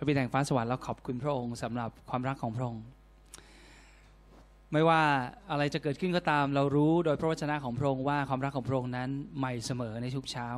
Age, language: 20-39, Thai